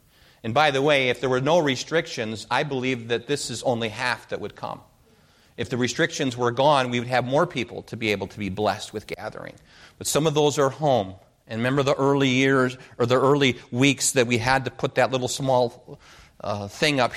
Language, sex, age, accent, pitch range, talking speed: English, male, 40-59, American, 100-130 Hz, 220 wpm